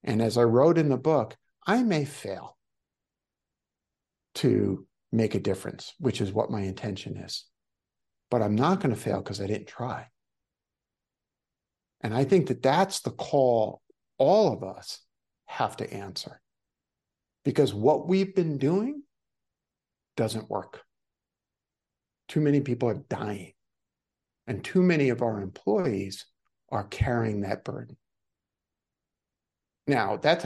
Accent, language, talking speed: American, English, 130 wpm